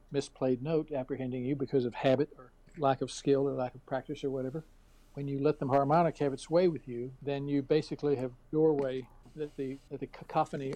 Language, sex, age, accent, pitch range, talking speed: English, male, 60-79, American, 135-160 Hz, 210 wpm